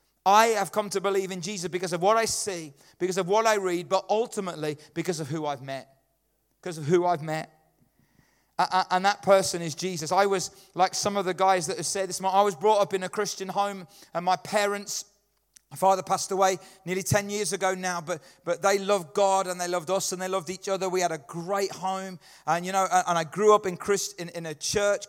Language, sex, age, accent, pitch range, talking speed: English, male, 30-49, British, 175-200 Hz, 230 wpm